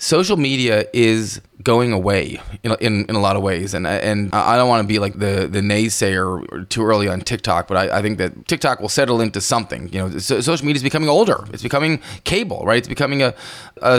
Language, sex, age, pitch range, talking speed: English, male, 20-39, 100-125 Hz, 225 wpm